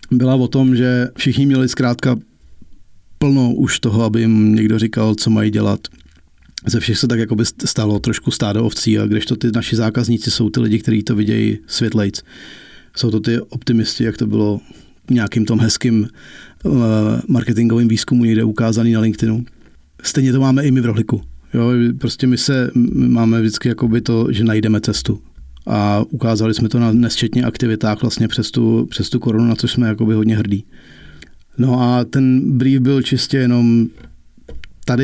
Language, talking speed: Czech, 175 wpm